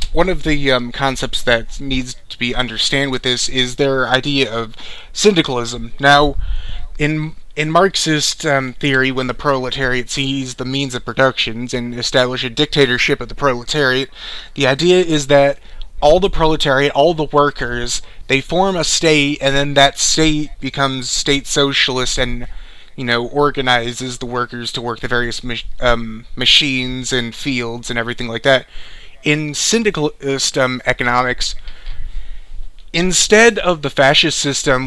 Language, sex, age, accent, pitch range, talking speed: English, male, 30-49, American, 120-140 Hz, 150 wpm